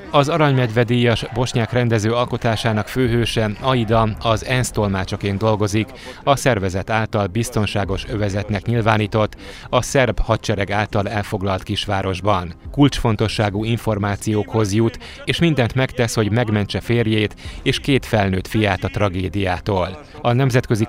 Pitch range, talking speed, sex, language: 100-120 Hz, 110 wpm, male, Hungarian